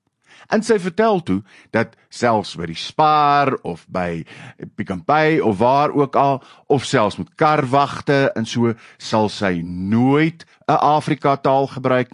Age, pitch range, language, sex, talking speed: 50-69, 105-160 Hz, English, male, 150 wpm